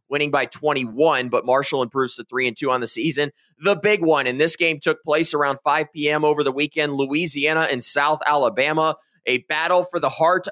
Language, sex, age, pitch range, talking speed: English, male, 30-49, 125-155 Hz, 200 wpm